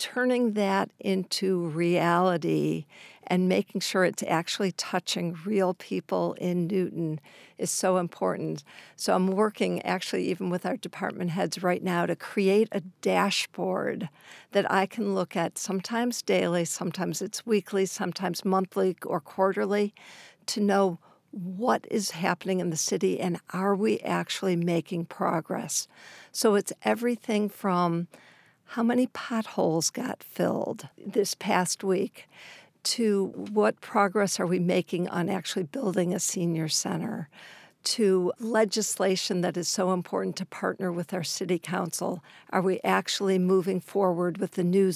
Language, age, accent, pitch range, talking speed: English, 60-79, American, 175-200 Hz, 140 wpm